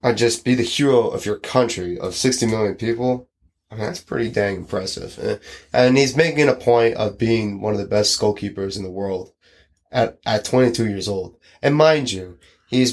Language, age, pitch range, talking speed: English, 20-39, 105-125 Hz, 195 wpm